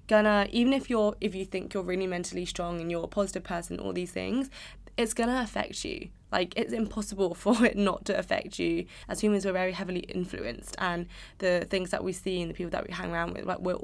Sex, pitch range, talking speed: female, 175-205 Hz, 235 wpm